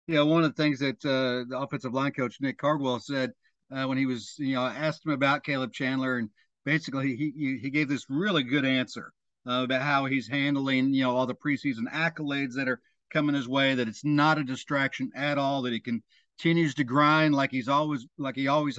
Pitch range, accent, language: 135-155 Hz, American, English